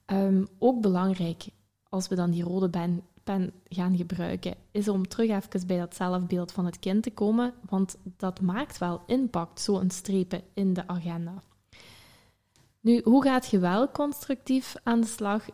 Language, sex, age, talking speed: Dutch, female, 20-39, 160 wpm